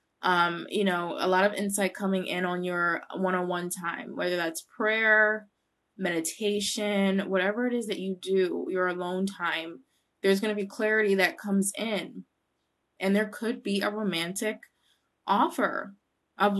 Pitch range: 190-215 Hz